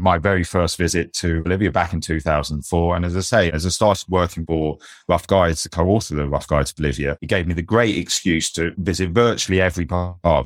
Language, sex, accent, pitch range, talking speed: English, male, British, 85-105 Hz, 230 wpm